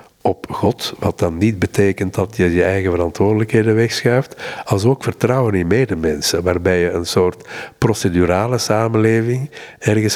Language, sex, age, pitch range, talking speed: Dutch, male, 50-69, 90-110 Hz, 140 wpm